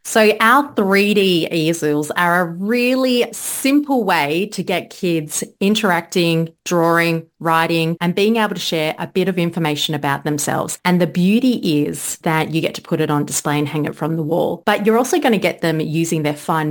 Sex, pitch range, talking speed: female, 160-220 Hz, 195 wpm